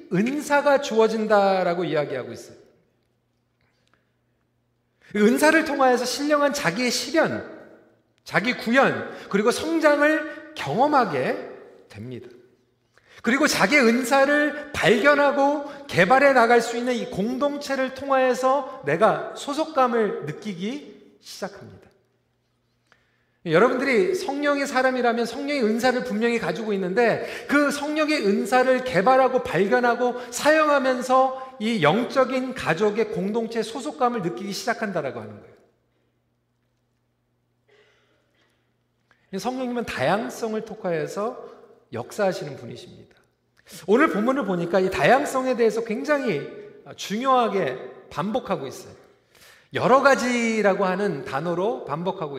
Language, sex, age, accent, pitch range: Korean, male, 40-59, native, 210-280 Hz